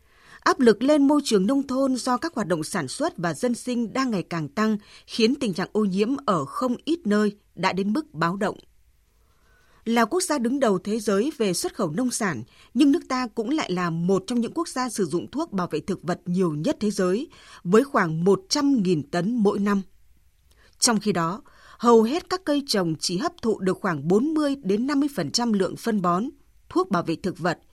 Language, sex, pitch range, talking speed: Vietnamese, female, 185-255 Hz, 210 wpm